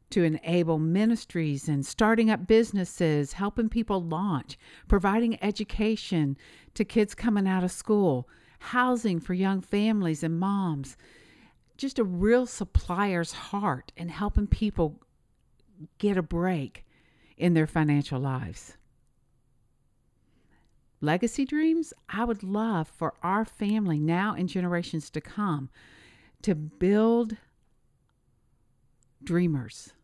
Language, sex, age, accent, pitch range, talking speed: English, female, 50-69, American, 150-195 Hz, 110 wpm